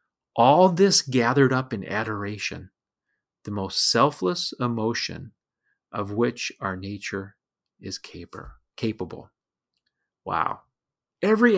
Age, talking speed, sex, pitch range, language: 40-59, 100 wpm, male, 105-135 Hz, English